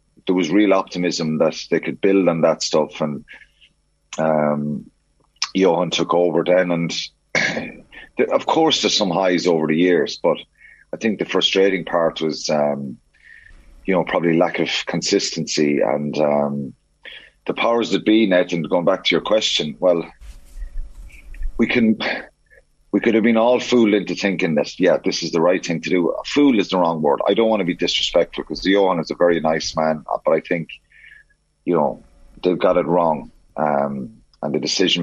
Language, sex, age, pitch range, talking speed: English, male, 30-49, 75-95 Hz, 180 wpm